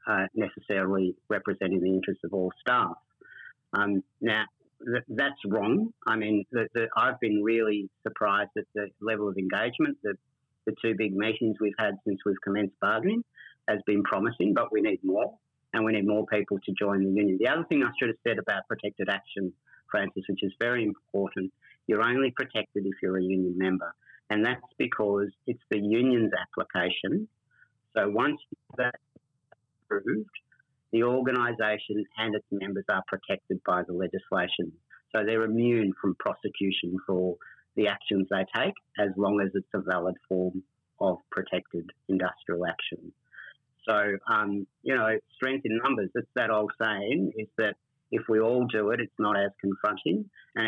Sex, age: male, 50-69